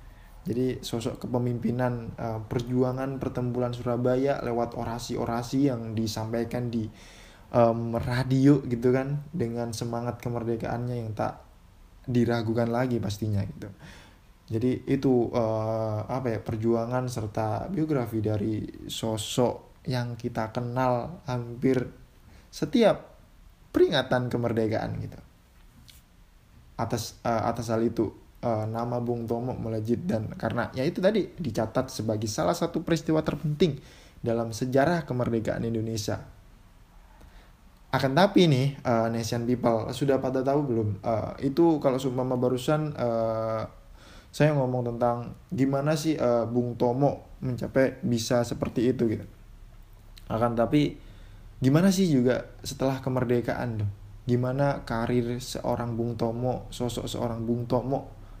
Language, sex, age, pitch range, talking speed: Indonesian, male, 20-39, 115-130 Hz, 115 wpm